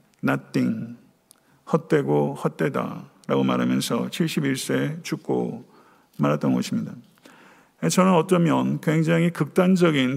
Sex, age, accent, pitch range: male, 50-69, native, 135-175 Hz